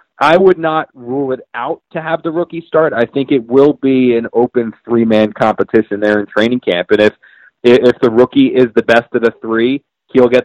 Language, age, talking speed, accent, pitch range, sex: English, 30-49, 210 wpm, American, 110-130 Hz, male